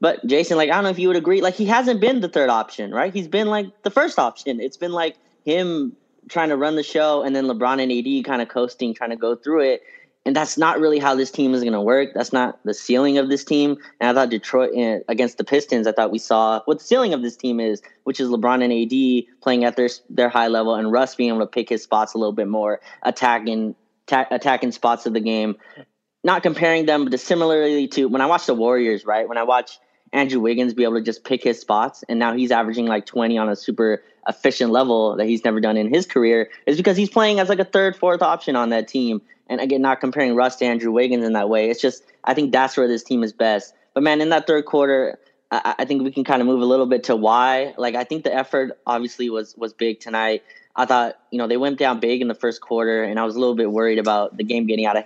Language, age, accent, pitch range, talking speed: English, 20-39, American, 115-145 Hz, 265 wpm